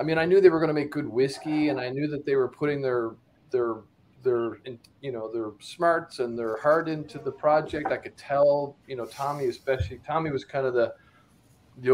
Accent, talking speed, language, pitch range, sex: American, 220 wpm, English, 120-150 Hz, male